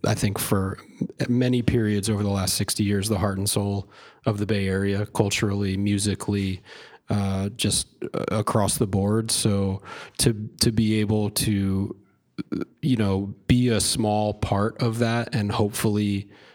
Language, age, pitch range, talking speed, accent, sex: English, 30-49, 100-115 Hz, 150 wpm, American, male